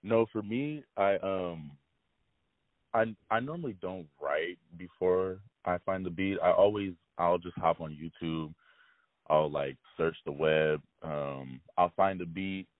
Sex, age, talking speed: male, 20-39, 150 wpm